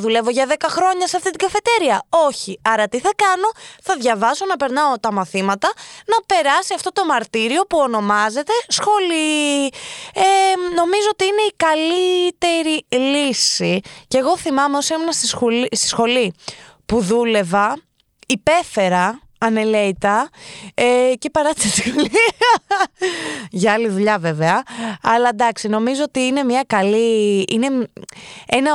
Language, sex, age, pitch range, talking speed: Greek, female, 20-39, 210-320 Hz, 130 wpm